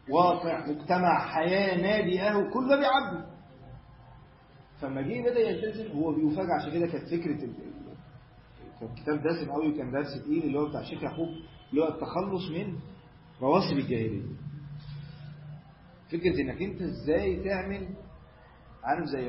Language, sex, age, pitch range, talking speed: Arabic, male, 40-59, 130-170 Hz, 135 wpm